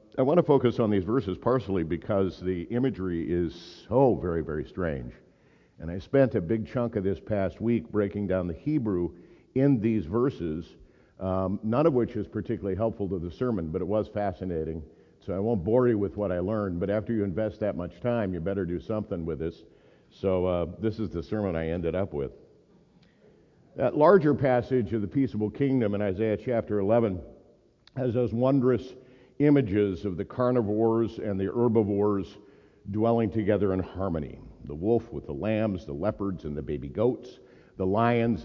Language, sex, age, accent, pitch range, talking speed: English, male, 50-69, American, 90-120 Hz, 185 wpm